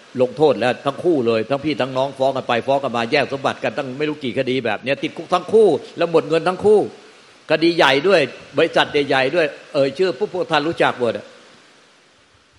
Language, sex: Thai, male